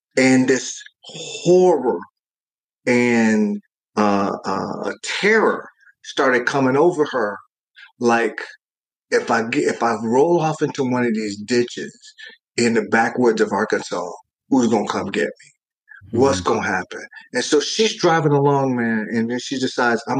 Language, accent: English, American